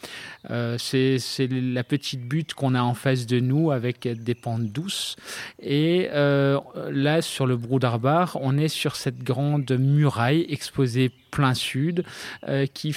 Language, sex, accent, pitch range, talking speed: French, male, French, 130-155 Hz, 155 wpm